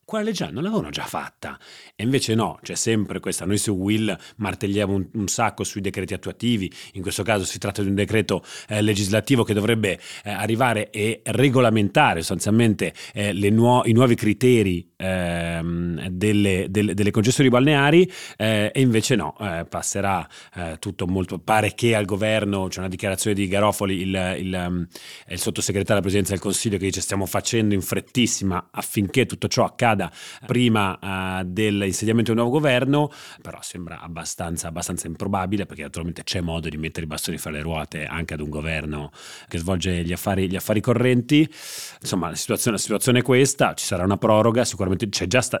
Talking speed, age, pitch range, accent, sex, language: 175 wpm, 30-49, 95-115 Hz, native, male, Italian